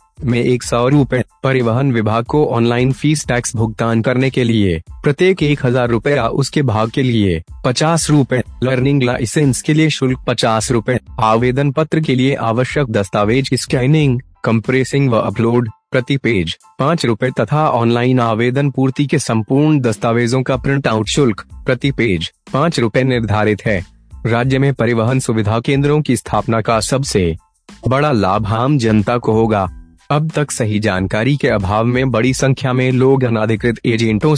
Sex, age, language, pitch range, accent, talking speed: male, 30-49, Hindi, 110-135 Hz, native, 155 wpm